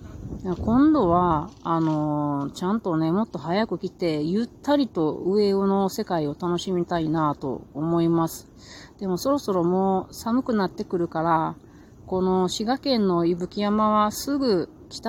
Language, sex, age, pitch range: Japanese, female, 30-49, 165-225 Hz